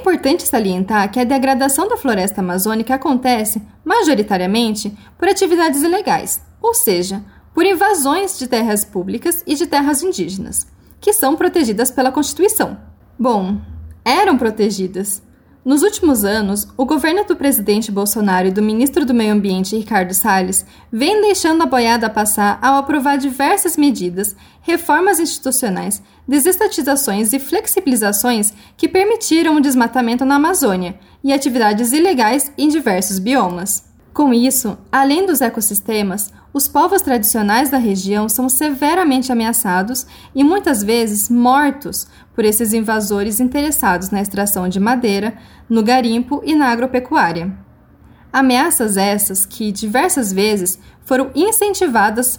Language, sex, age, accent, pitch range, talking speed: Portuguese, female, 10-29, Brazilian, 210-295 Hz, 130 wpm